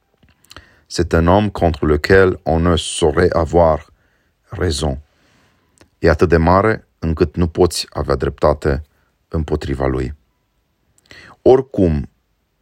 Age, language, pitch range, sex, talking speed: 30-49, Romanian, 75-95 Hz, male, 105 wpm